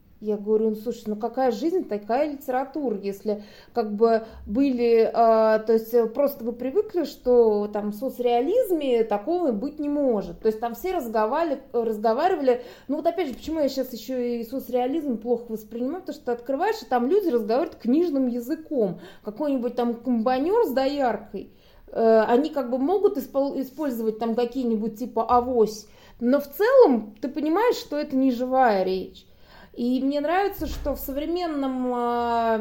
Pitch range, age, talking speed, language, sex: 220-275 Hz, 20-39, 160 wpm, Russian, female